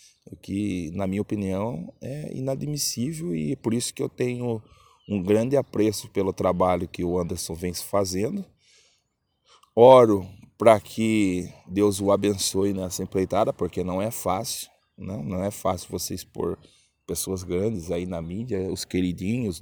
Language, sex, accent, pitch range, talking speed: Portuguese, male, Brazilian, 85-105 Hz, 145 wpm